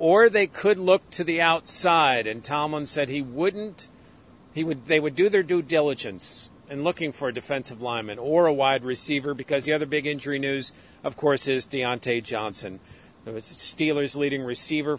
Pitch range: 125-155 Hz